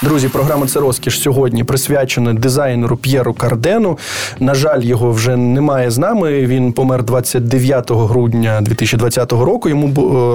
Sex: male